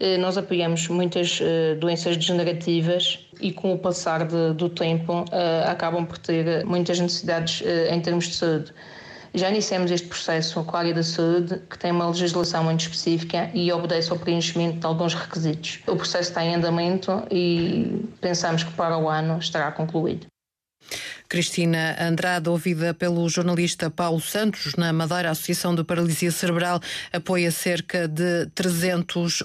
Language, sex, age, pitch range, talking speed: Portuguese, female, 20-39, 170-185 Hz, 150 wpm